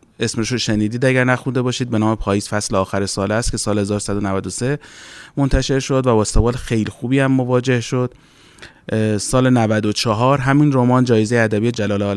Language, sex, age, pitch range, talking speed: Persian, male, 30-49, 110-135 Hz, 155 wpm